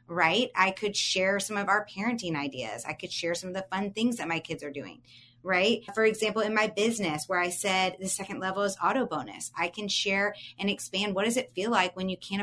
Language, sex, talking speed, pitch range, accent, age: English, female, 240 wpm, 165-210 Hz, American, 30-49